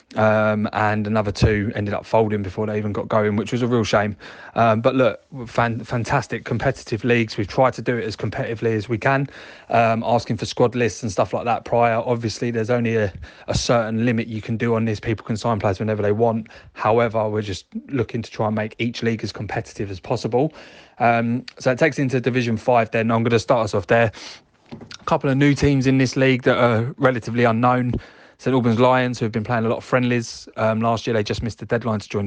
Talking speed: 230 wpm